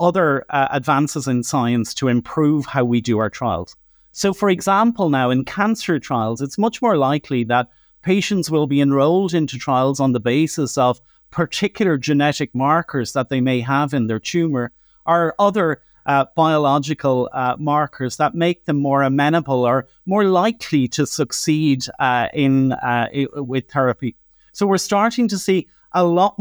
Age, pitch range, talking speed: 30-49, 135-170 Hz, 165 wpm